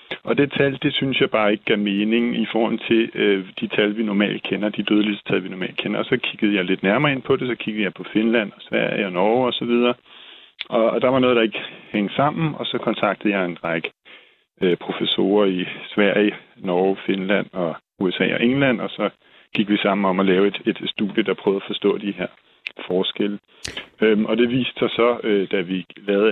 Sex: male